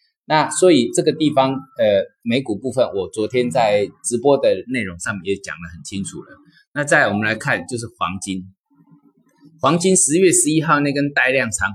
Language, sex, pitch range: Chinese, male, 115-180 Hz